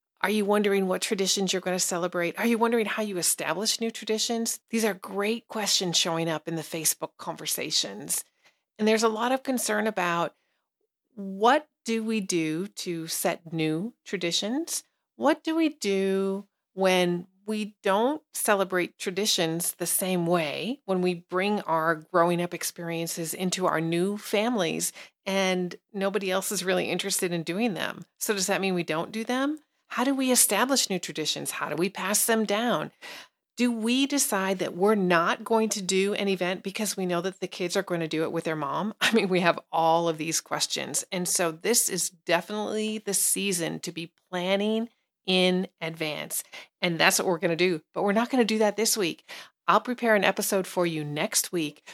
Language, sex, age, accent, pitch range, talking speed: English, female, 40-59, American, 175-220 Hz, 190 wpm